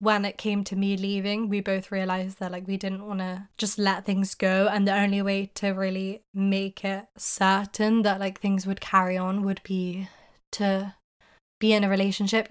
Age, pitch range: 20-39, 195-210 Hz